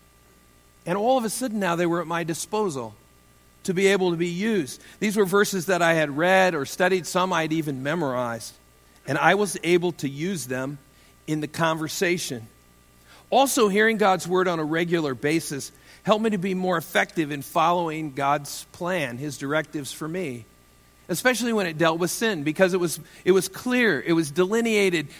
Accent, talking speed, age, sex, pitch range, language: American, 185 wpm, 50-69, male, 140-185 Hz, English